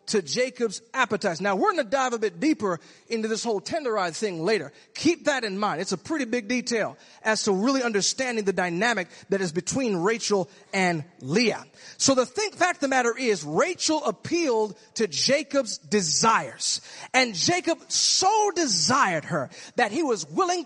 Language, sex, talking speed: English, male, 175 wpm